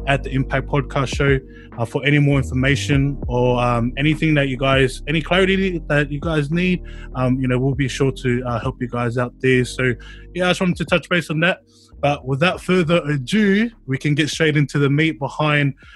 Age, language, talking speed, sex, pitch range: 20-39, English, 215 wpm, male, 135-165 Hz